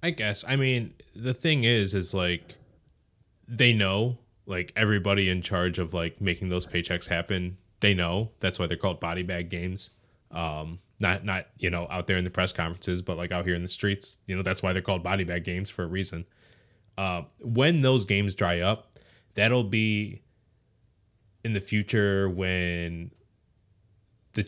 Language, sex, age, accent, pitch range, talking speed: English, male, 20-39, American, 90-110 Hz, 180 wpm